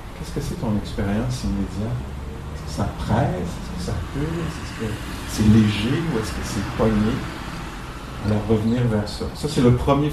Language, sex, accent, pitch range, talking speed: English, male, French, 105-125 Hz, 190 wpm